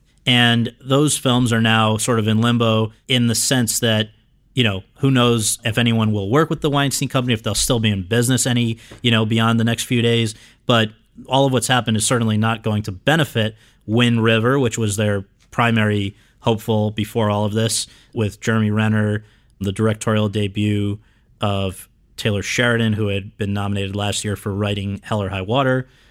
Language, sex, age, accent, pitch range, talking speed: English, male, 30-49, American, 110-125 Hz, 190 wpm